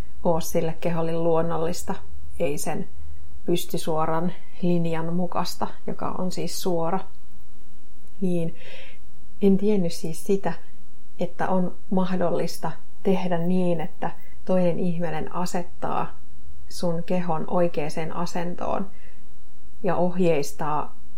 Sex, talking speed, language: female, 95 wpm, Finnish